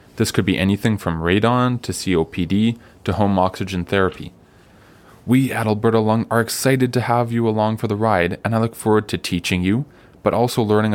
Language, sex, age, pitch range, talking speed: English, male, 20-39, 90-110 Hz, 190 wpm